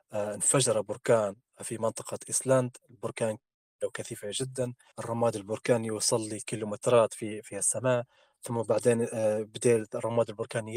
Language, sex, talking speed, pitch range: Arabic, male, 115 wpm, 110-135 Hz